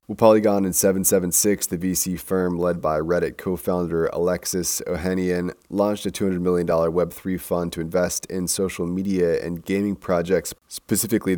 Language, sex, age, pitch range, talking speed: English, male, 30-49, 85-95 Hz, 155 wpm